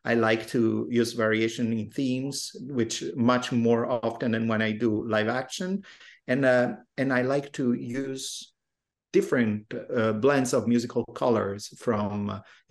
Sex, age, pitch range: male, 50-69, 115-130 Hz